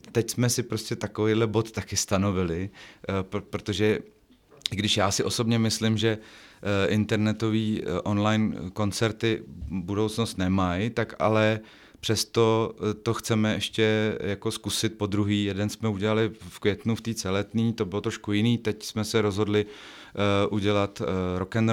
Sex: male